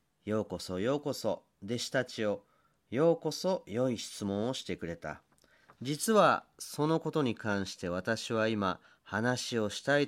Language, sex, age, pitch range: Japanese, male, 40-59, 95-155 Hz